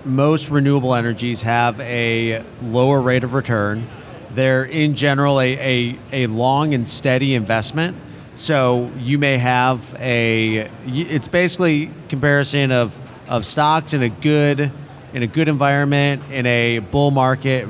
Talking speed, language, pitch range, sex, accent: 140 wpm, English, 115-135 Hz, male, American